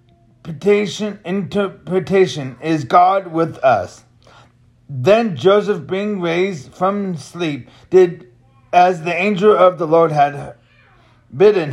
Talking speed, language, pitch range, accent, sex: 105 wpm, English, 125-185 Hz, American, male